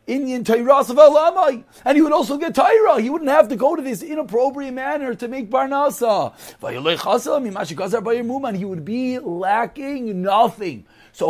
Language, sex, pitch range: English, male, 210-270 Hz